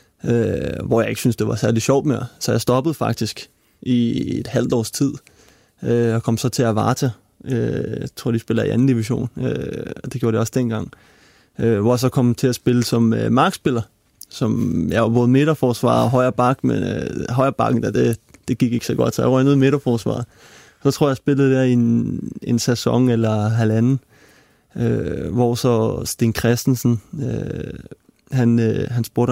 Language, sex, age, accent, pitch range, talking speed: Danish, male, 20-39, native, 115-130 Hz, 190 wpm